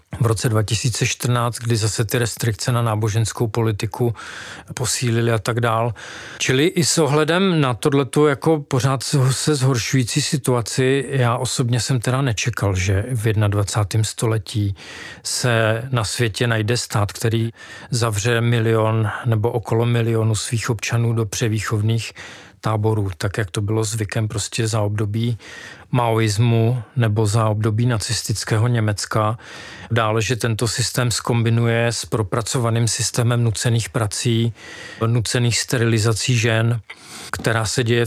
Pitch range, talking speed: 110-120 Hz, 125 wpm